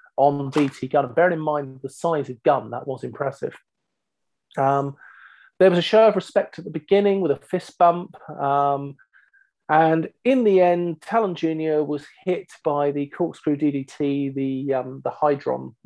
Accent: British